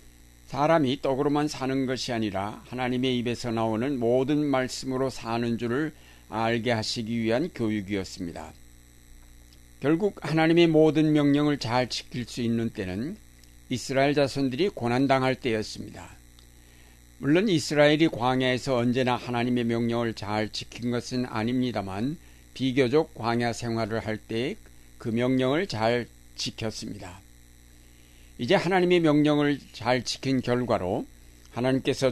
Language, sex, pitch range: Korean, male, 100-135 Hz